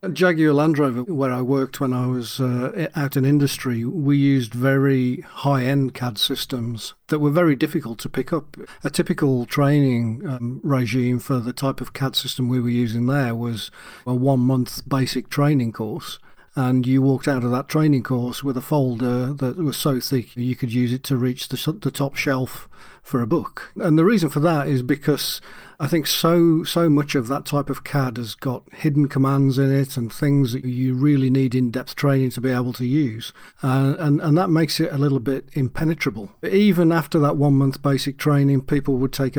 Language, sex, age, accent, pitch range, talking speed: English, male, 40-59, British, 125-145 Hz, 195 wpm